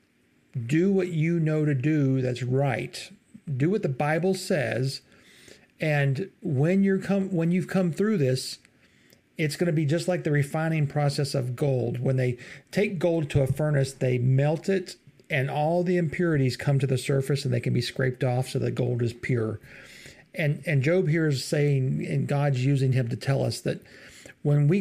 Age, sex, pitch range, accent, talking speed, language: 50-69, male, 130-160 Hz, American, 190 wpm, English